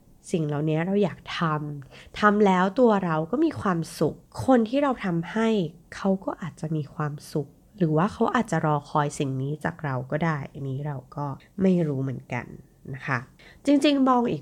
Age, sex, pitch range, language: 20-39, female, 150-195 Hz, Thai